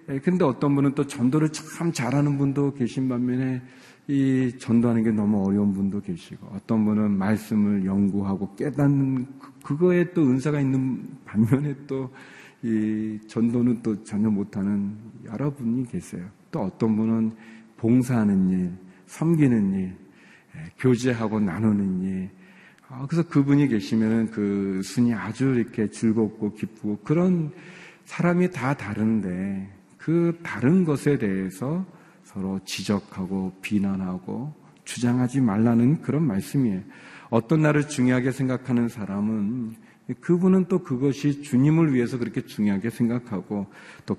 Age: 40-59